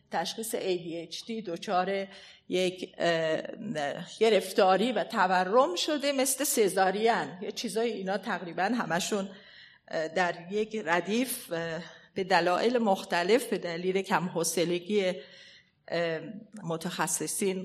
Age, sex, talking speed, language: 40-59, female, 85 wpm, Persian